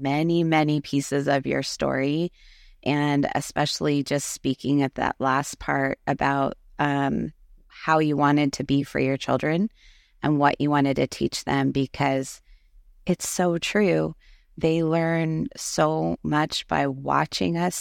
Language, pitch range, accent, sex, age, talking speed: English, 125-155 Hz, American, female, 20-39, 140 wpm